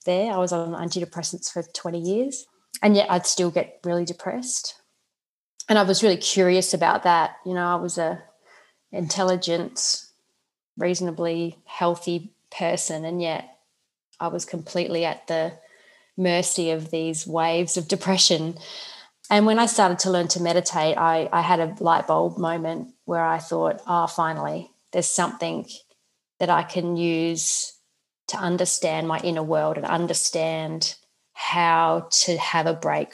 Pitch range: 165-185 Hz